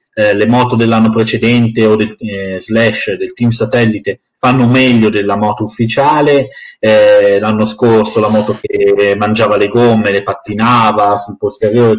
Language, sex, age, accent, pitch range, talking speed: Italian, male, 30-49, native, 105-130 Hz, 150 wpm